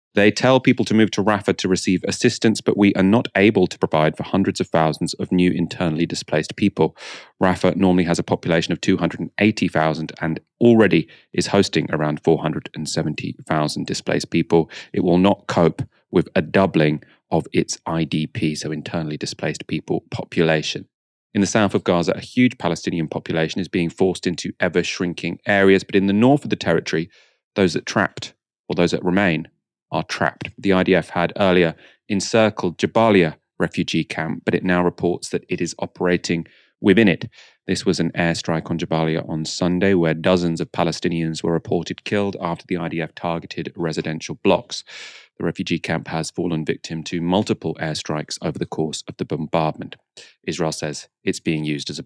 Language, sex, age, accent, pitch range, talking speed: English, male, 30-49, British, 80-100 Hz, 170 wpm